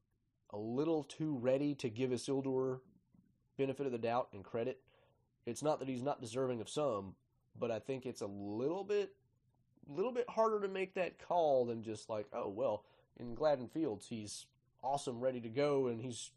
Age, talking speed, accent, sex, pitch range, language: 30-49, 185 wpm, American, male, 110-140 Hz, English